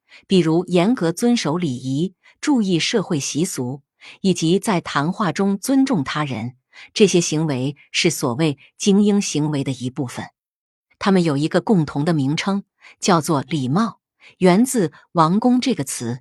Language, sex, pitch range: Chinese, female, 140-200 Hz